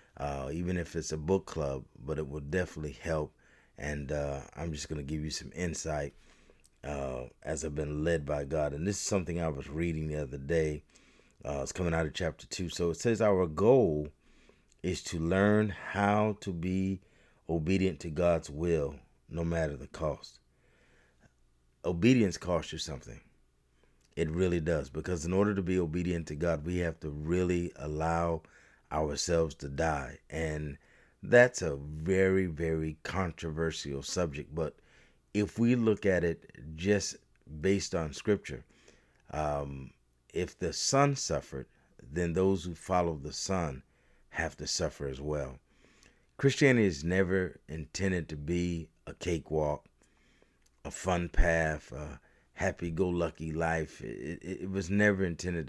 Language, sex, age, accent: English, male, 30-49, American